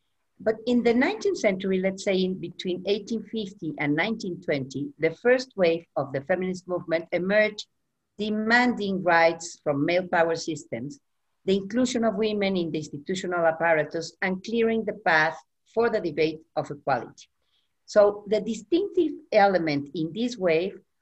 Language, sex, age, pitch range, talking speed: English, female, 50-69, 160-220 Hz, 145 wpm